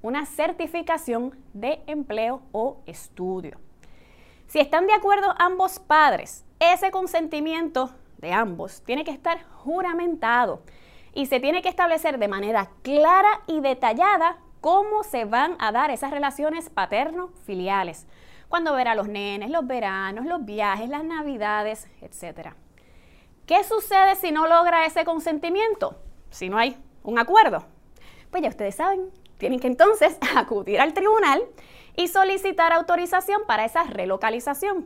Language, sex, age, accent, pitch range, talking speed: English, female, 20-39, American, 225-350 Hz, 135 wpm